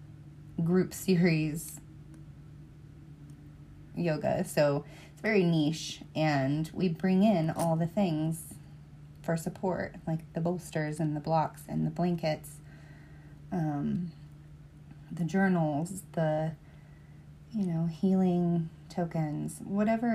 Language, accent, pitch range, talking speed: English, American, 150-175 Hz, 100 wpm